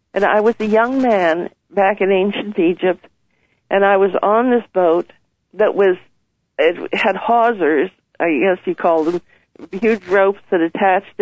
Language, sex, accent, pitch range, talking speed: English, female, American, 180-215 Hz, 160 wpm